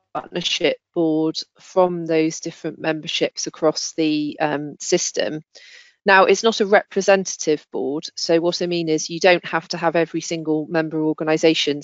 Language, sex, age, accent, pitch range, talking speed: English, female, 40-59, British, 155-185 Hz, 150 wpm